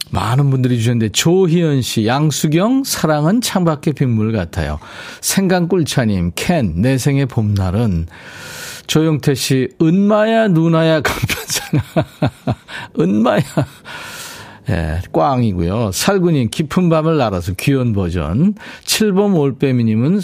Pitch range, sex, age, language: 110-165 Hz, male, 40-59, Korean